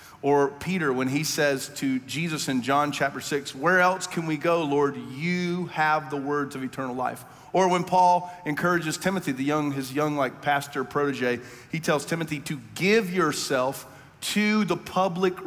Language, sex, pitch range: English, male, 135-175 Hz